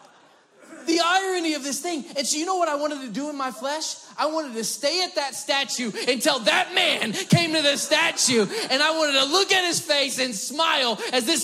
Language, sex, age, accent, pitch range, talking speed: English, male, 20-39, American, 155-260 Hz, 225 wpm